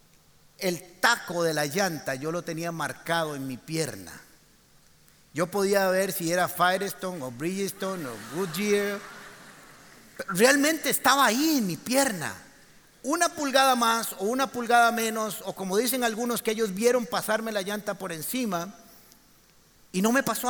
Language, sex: Spanish, male